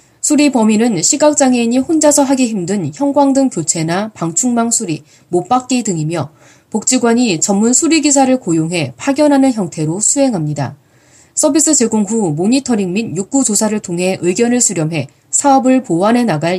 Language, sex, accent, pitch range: Korean, female, native, 160-250 Hz